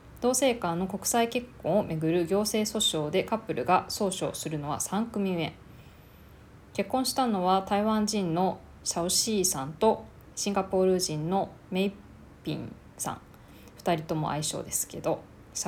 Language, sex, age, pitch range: Japanese, female, 20-39, 150-200 Hz